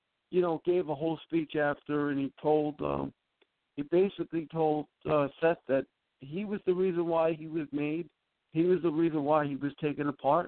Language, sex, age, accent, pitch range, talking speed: English, male, 50-69, American, 145-190 Hz, 195 wpm